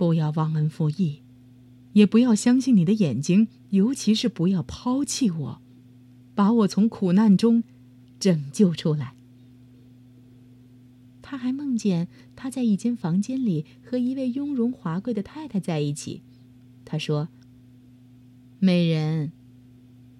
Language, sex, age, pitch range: Chinese, female, 30-49, 125-200 Hz